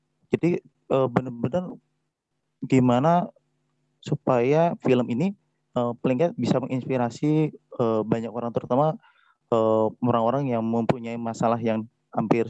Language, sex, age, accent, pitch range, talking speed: Indonesian, male, 30-49, native, 115-140 Hz, 85 wpm